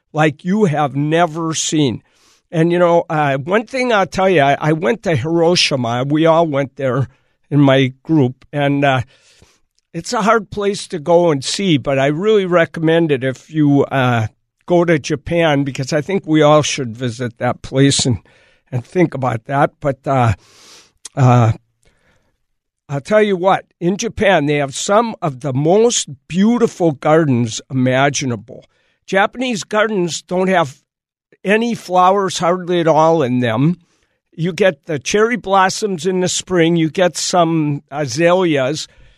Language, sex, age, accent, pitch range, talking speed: English, male, 60-79, American, 135-175 Hz, 155 wpm